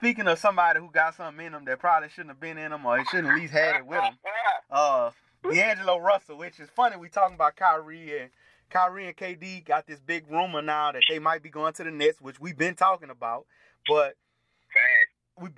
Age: 30-49